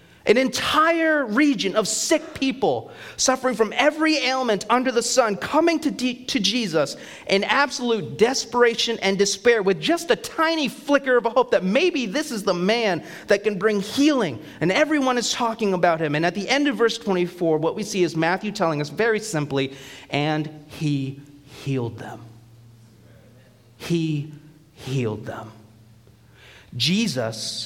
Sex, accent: male, American